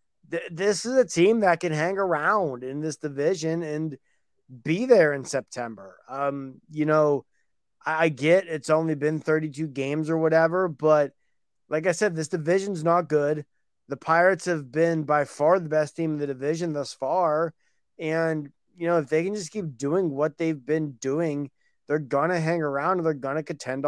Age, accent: 20-39, American